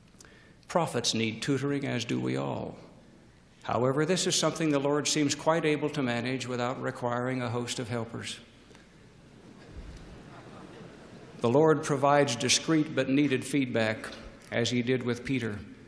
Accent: American